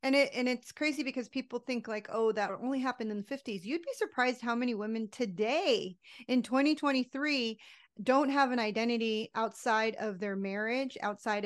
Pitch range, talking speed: 220-255 Hz, 180 wpm